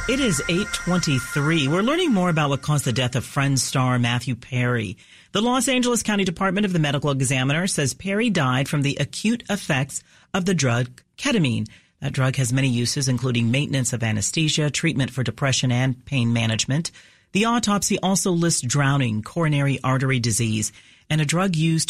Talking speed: 175 wpm